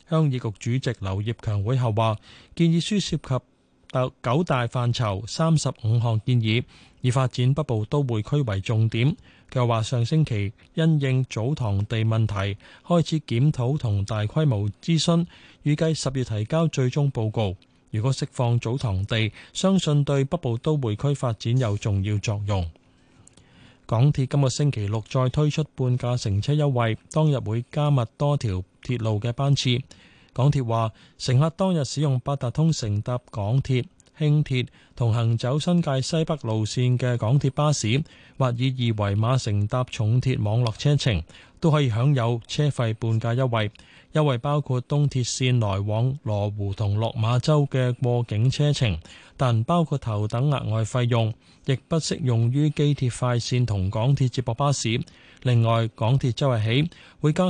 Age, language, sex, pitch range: 20-39, Chinese, male, 110-145 Hz